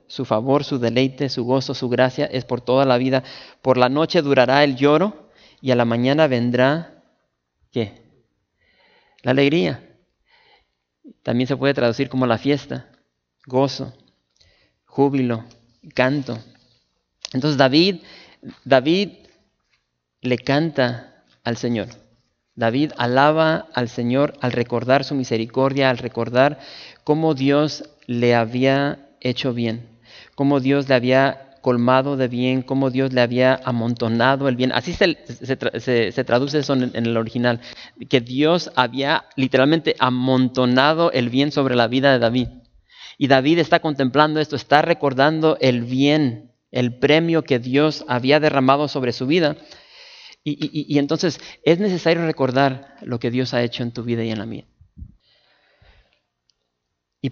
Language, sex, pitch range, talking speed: English, male, 120-145 Hz, 140 wpm